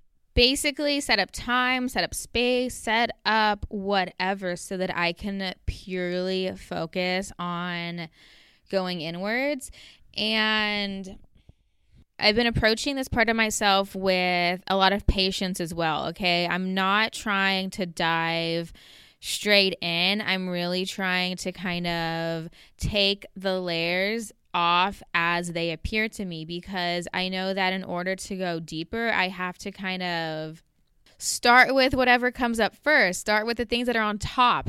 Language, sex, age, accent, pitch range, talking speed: English, female, 20-39, American, 175-210 Hz, 145 wpm